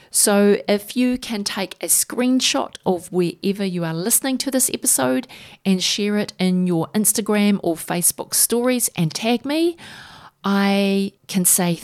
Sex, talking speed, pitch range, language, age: female, 150 wpm, 175-230 Hz, English, 40-59